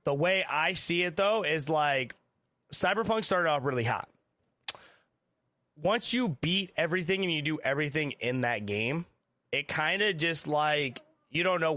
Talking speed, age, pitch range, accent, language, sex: 165 wpm, 20-39, 120-155 Hz, American, English, male